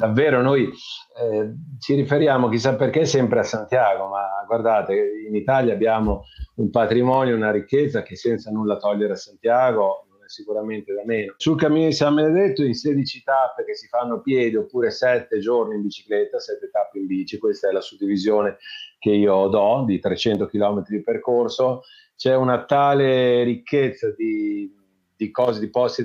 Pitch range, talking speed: 110-150 Hz, 165 wpm